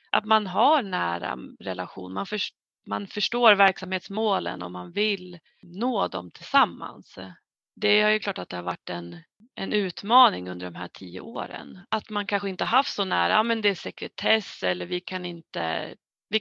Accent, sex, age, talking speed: native, female, 30-49, 180 wpm